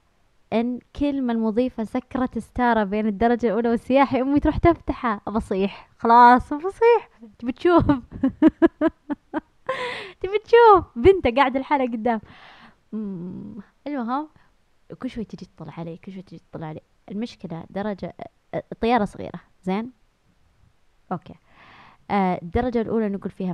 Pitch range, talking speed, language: 175-240 Hz, 110 wpm, Arabic